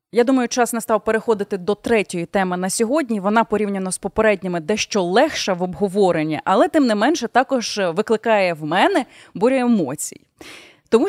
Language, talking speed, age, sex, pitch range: Ukrainian, 155 wpm, 20-39, female, 185-270 Hz